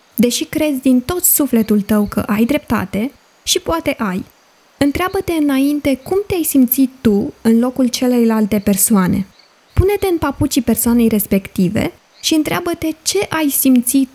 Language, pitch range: Romanian, 220-290 Hz